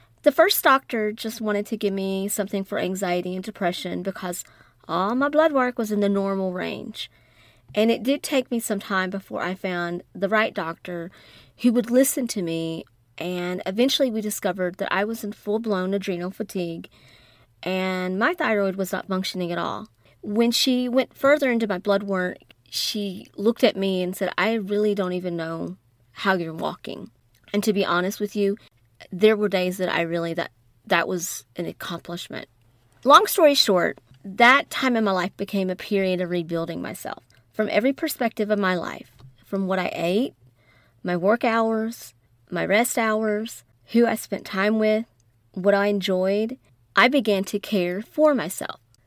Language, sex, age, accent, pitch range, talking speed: English, female, 30-49, American, 170-220 Hz, 175 wpm